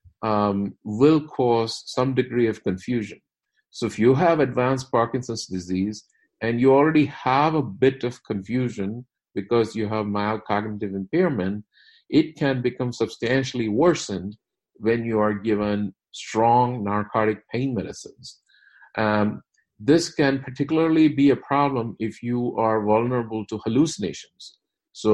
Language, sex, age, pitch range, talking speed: English, male, 50-69, 100-125 Hz, 130 wpm